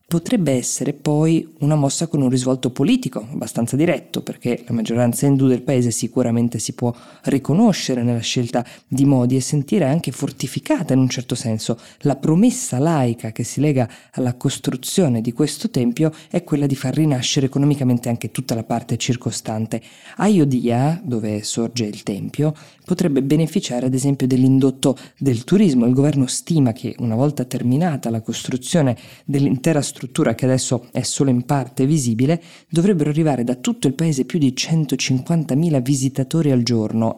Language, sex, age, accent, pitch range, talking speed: Italian, female, 20-39, native, 120-150 Hz, 155 wpm